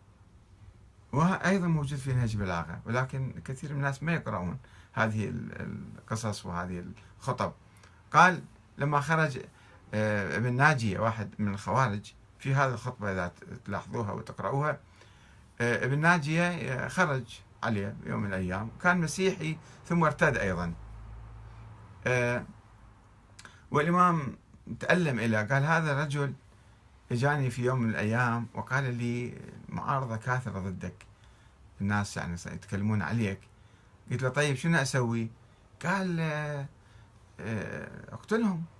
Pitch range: 105-150 Hz